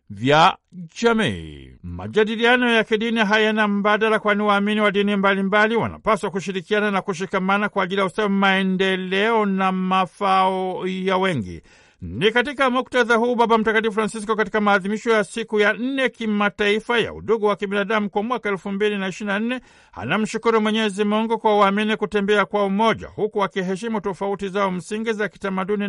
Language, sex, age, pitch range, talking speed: Swahili, male, 60-79, 195-220 Hz, 150 wpm